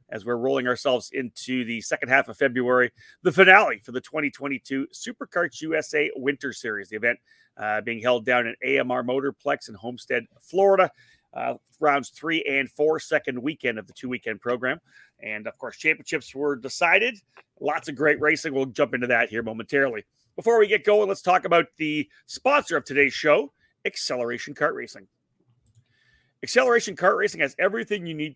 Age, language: 30-49, English